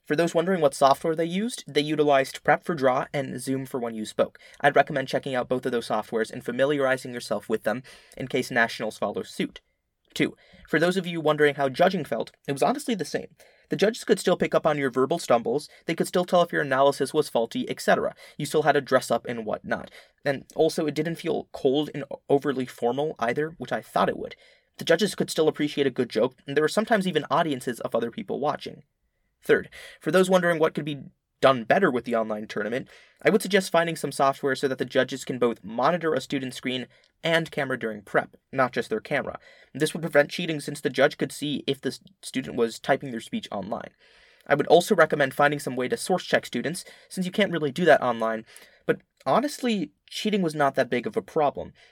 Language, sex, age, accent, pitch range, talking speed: English, male, 20-39, American, 130-170 Hz, 225 wpm